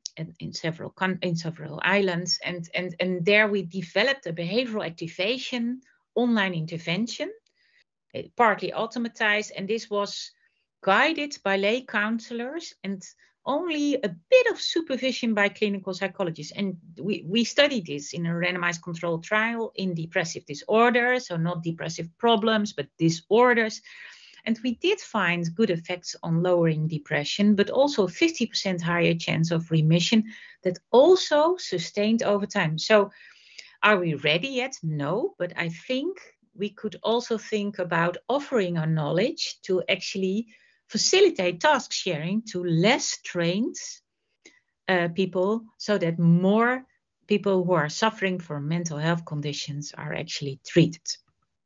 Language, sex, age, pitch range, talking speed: Polish, female, 40-59, 170-235 Hz, 135 wpm